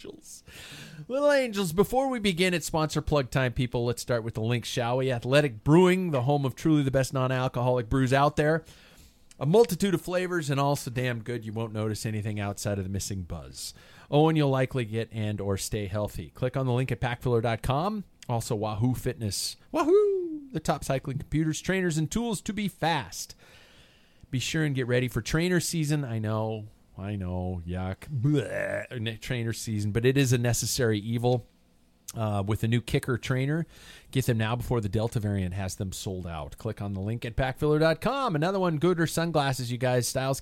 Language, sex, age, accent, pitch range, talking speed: English, male, 40-59, American, 105-145 Hz, 190 wpm